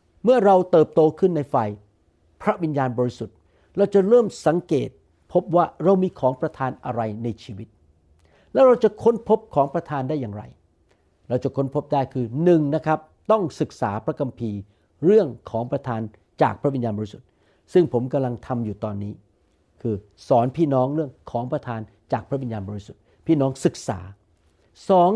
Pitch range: 115-170 Hz